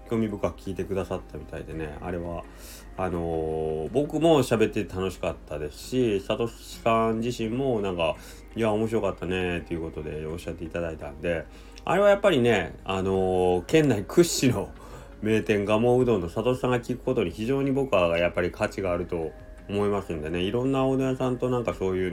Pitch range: 85-120 Hz